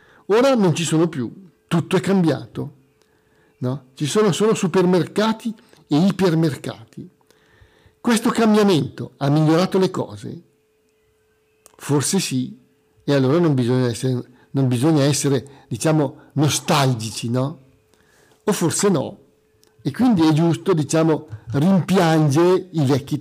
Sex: male